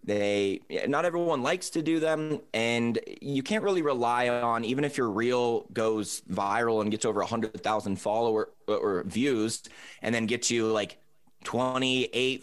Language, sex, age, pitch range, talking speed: English, male, 20-39, 110-130 Hz, 165 wpm